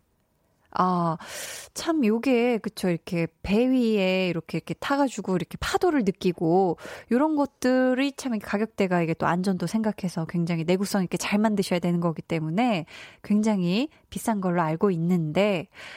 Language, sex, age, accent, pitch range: Korean, female, 20-39, native, 180-255 Hz